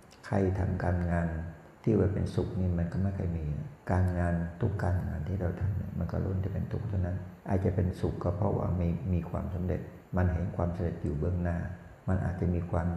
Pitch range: 85-100 Hz